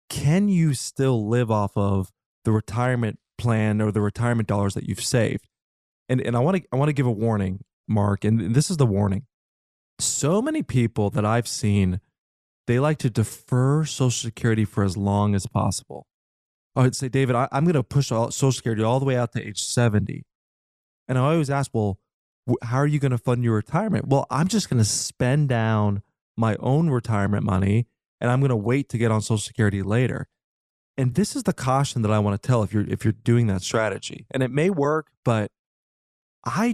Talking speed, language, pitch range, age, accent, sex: 205 wpm, English, 105-135 Hz, 20-39, American, male